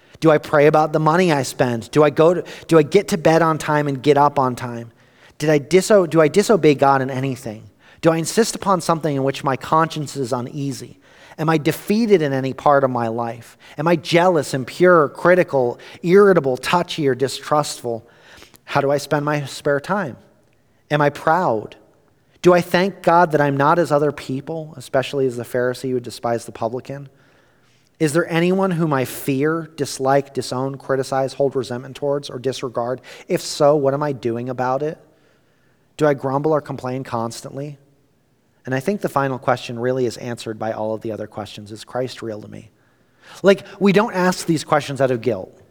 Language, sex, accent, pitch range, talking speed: English, male, American, 125-155 Hz, 195 wpm